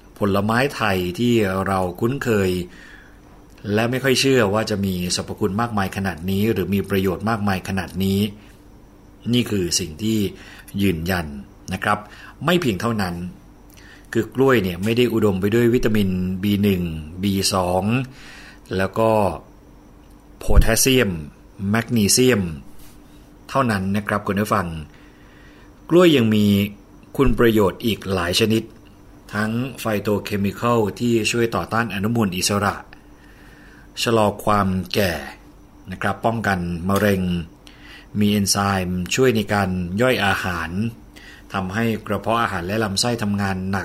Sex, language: male, Thai